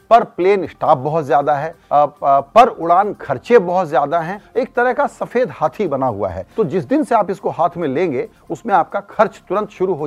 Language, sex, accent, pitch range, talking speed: Hindi, male, native, 150-210 Hz, 210 wpm